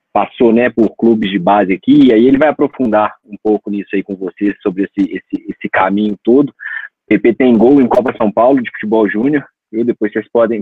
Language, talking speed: Portuguese, 215 wpm